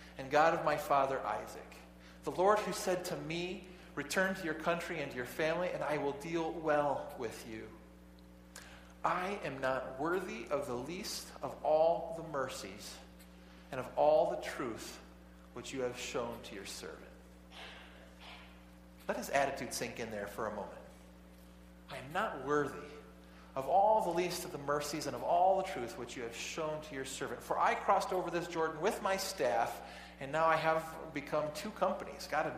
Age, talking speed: 40-59, 185 wpm